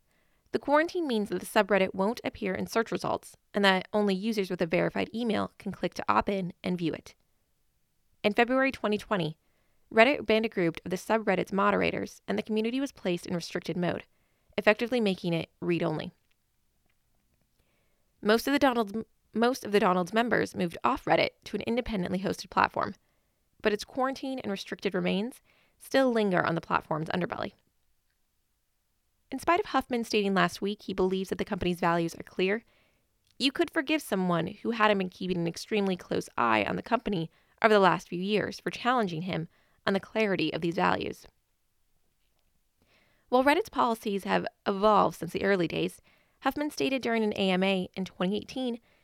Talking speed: 170 wpm